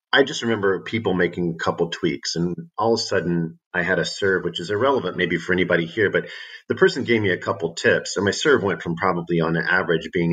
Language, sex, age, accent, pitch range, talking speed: English, male, 40-59, American, 85-95 Hz, 240 wpm